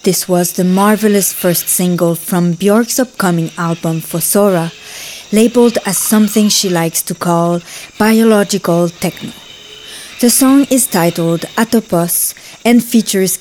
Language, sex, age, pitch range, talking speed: English, female, 20-39, 175-220 Hz, 120 wpm